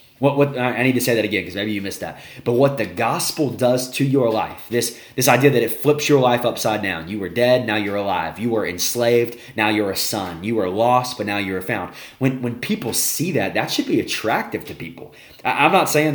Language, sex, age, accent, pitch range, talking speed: English, male, 20-39, American, 105-135 Hz, 245 wpm